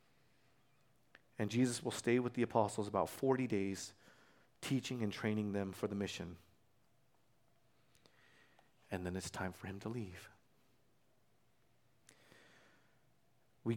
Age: 40-59